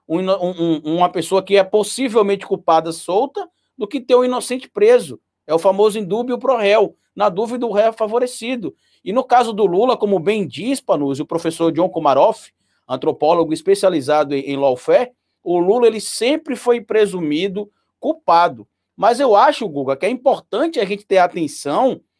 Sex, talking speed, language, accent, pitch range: male, 160 wpm, Portuguese, Brazilian, 175-255 Hz